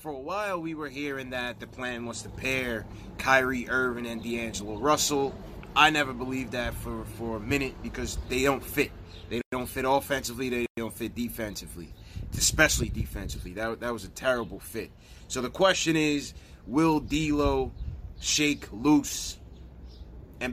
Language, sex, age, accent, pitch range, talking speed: English, male, 30-49, American, 110-140 Hz, 155 wpm